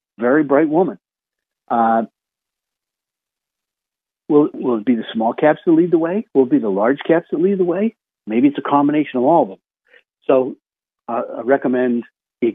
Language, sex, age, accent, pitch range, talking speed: English, male, 50-69, American, 120-165 Hz, 180 wpm